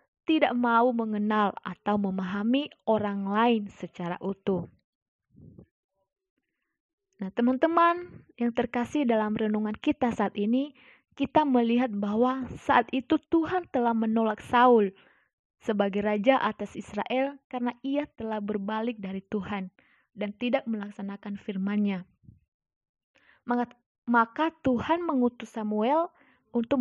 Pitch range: 205-260 Hz